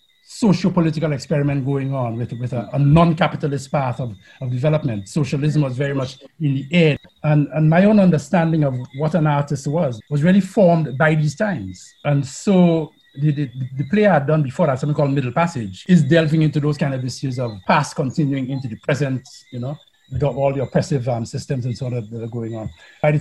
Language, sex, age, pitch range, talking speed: English, male, 60-79, 140-185 Hz, 210 wpm